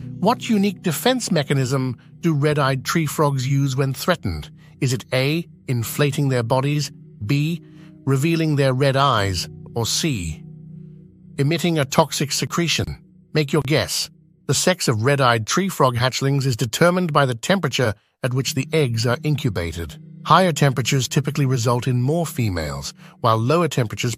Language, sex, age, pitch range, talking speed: English, male, 50-69, 120-155 Hz, 145 wpm